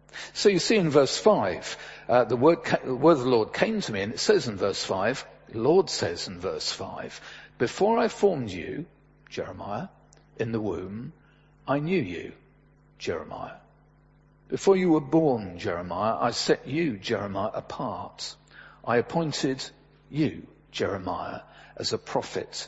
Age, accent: 50-69, British